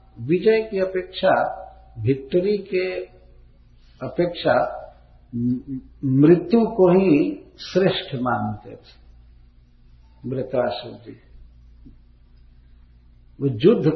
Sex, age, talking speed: male, 50-69, 75 wpm